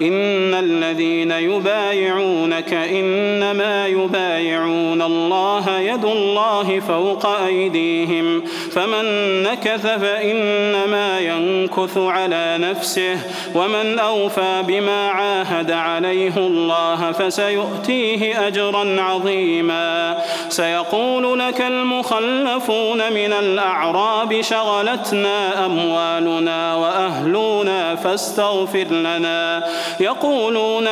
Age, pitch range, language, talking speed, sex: 30-49, 170-210 Hz, Arabic, 70 wpm, male